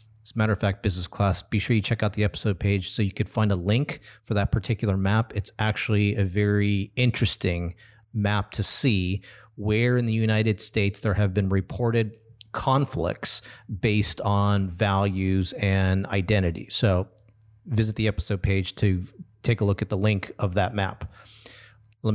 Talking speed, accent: 175 wpm, American